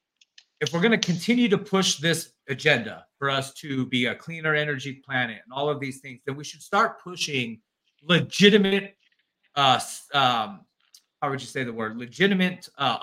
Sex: male